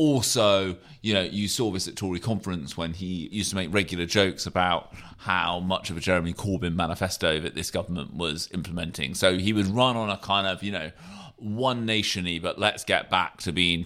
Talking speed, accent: 200 wpm, British